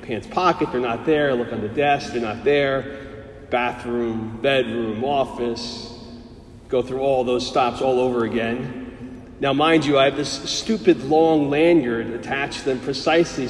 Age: 40-59